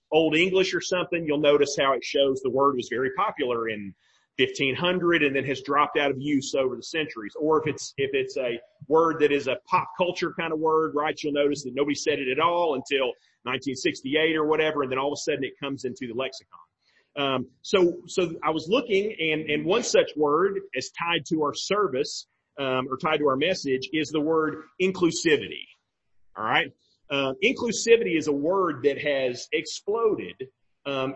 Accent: American